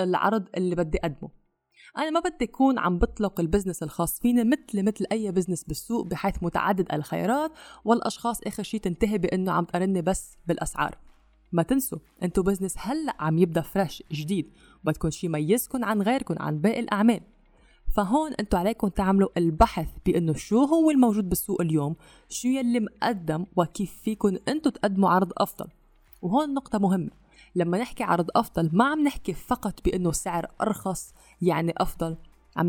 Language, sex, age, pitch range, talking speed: English, female, 20-39, 175-230 Hz, 155 wpm